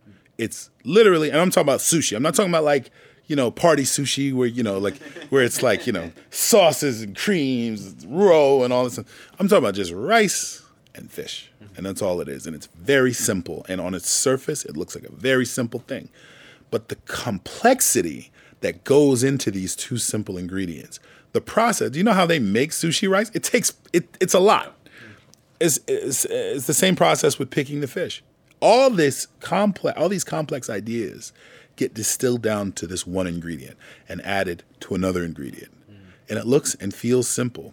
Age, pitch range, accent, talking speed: 40-59, 95-145 Hz, American, 190 wpm